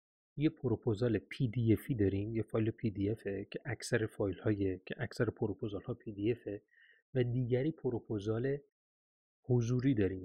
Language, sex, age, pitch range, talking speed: Persian, male, 30-49, 110-155 Hz, 140 wpm